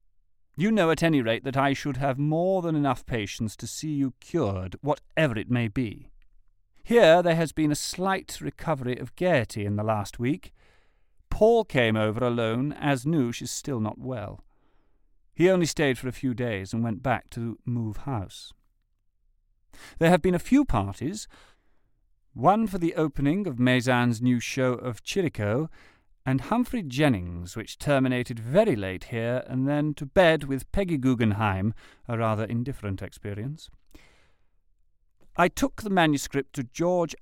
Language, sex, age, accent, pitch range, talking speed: English, male, 40-59, British, 105-150 Hz, 160 wpm